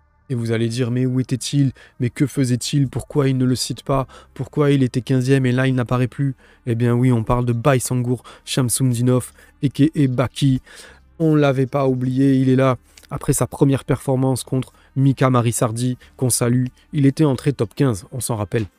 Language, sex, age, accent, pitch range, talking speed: French, male, 20-39, French, 120-140 Hz, 200 wpm